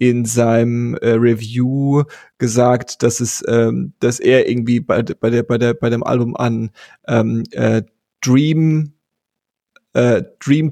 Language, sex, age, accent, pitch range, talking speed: German, male, 30-49, German, 120-140 Hz, 140 wpm